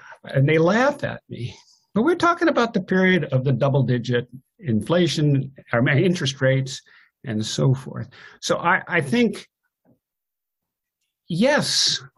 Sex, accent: male, American